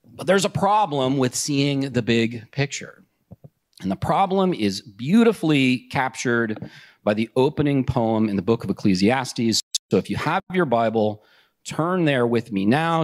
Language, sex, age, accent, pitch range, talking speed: English, male, 40-59, American, 120-170 Hz, 160 wpm